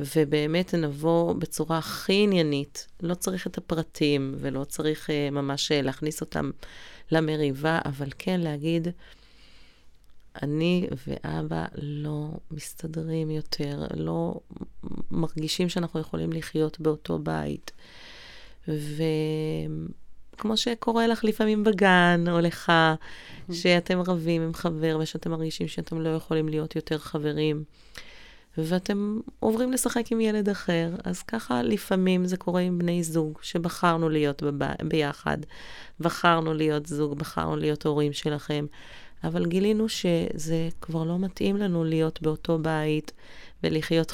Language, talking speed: Hebrew, 115 wpm